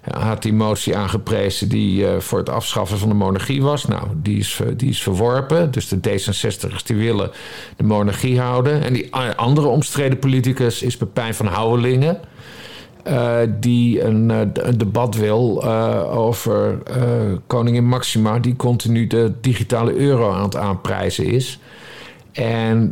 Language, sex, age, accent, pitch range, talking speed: Dutch, male, 50-69, Dutch, 100-125 Hz, 145 wpm